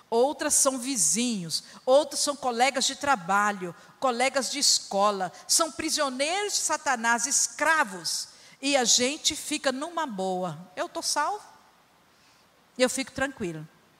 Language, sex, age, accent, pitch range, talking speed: Portuguese, female, 50-69, Brazilian, 225-300 Hz, 120 wpm